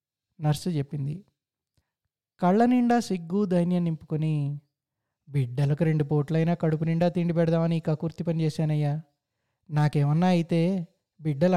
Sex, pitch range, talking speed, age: male, 145-195 Hz, 110 wpm, 20-39